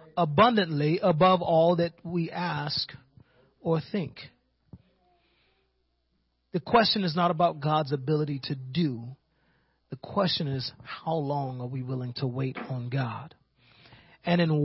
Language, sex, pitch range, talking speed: English, male, 125-170 Hz, 125 wpm